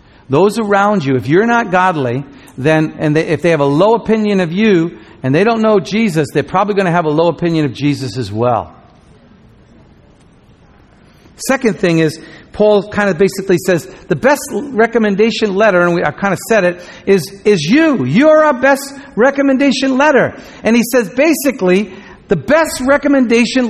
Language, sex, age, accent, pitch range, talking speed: English, male, 50-69, American, 170-230 Hz, 175 wpm